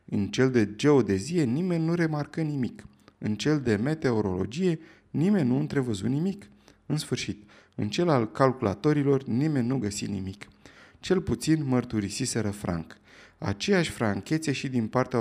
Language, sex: Romanian, male